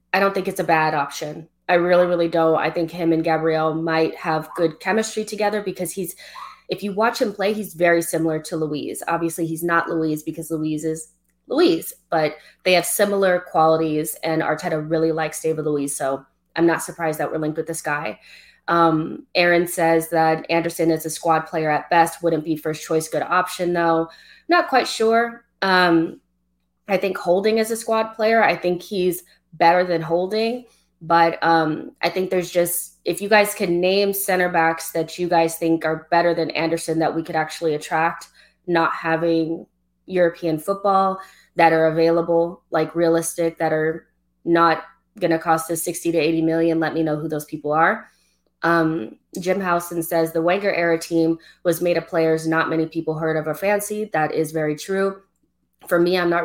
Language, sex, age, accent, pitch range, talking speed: English, female, 20-39, American, 160-180 Hz, 185 wpm